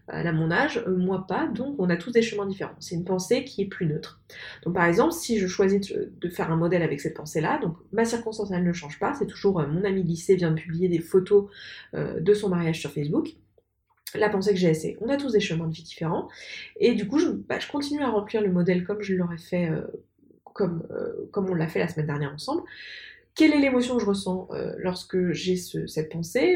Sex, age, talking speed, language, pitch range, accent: female, 20-39, 240 wpm, French, 165-210 Hz, French